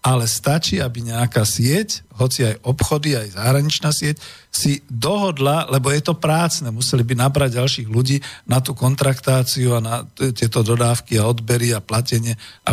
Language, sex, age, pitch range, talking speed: Slovak, male, 50-69, 120-145 Hz, 160 wpm